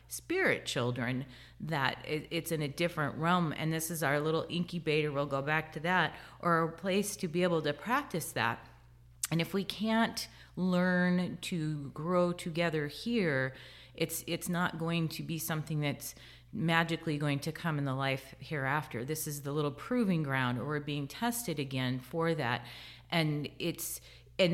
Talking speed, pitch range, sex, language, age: 170 wpm, 140-170 Hz, female, English, 30-49